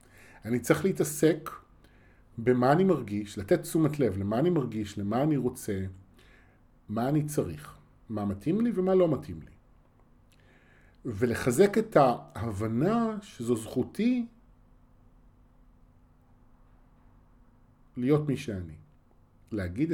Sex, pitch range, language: male, 100-150 Hz, Hebrew